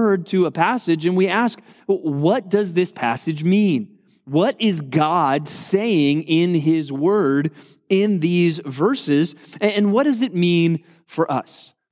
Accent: American